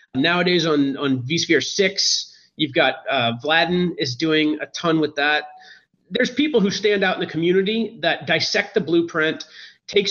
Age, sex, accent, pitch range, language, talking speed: 40-59, male, American, 155-200 Hz, English, 165 wpm